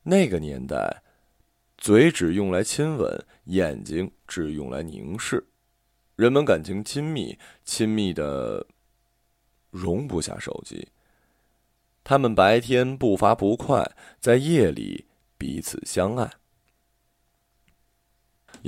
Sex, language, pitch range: male, Chinese, 105-125 Hz